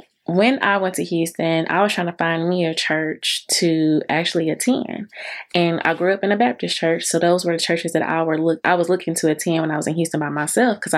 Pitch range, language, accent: 160-185 Hz, English, American